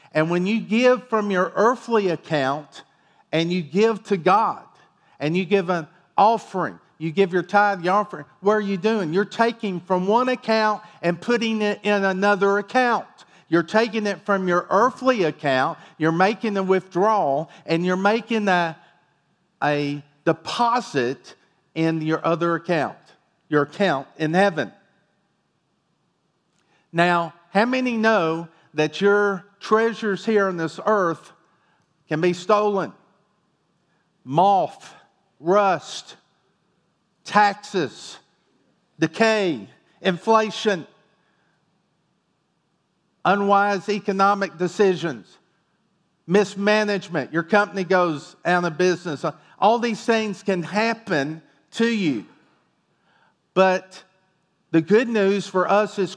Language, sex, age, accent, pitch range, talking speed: English, male, 50-69, American, 170-205 Hz, 115 wpm